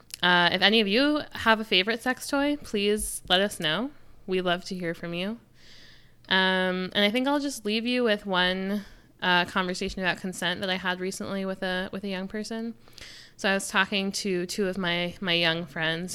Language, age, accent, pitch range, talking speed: English, 20-39, American, 170-205 Hz, 205 wpm